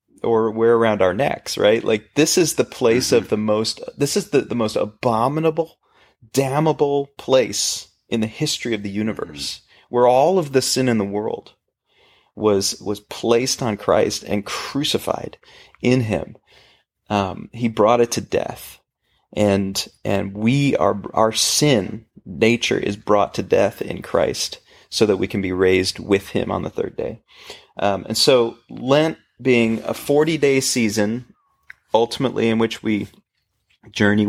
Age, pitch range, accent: 30-49, 100-125 Hz, American